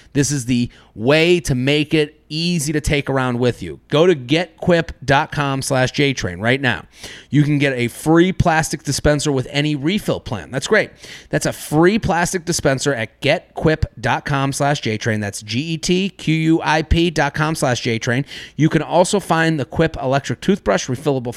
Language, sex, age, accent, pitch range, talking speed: English, male, 30-49, American, 120-155 Hz, 160 wpm